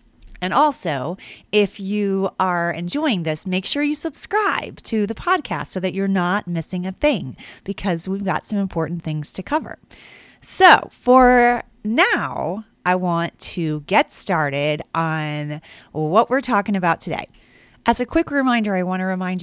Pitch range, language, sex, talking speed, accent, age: 155-205 Hz, English, female, 155 wpm, American, 30-49